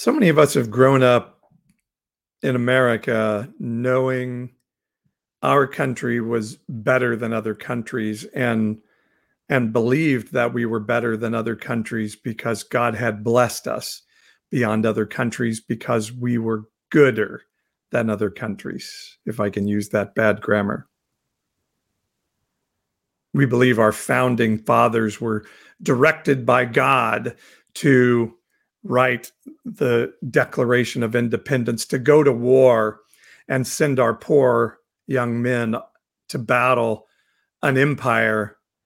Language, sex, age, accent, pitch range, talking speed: English, male, 50-69, American, 110-130 Hz, 120 wpm